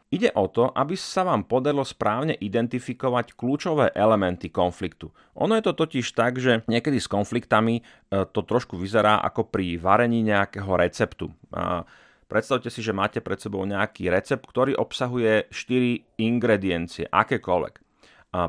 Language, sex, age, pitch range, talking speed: Slovak, male, 30-49, 95-120 Hz, 145 wpm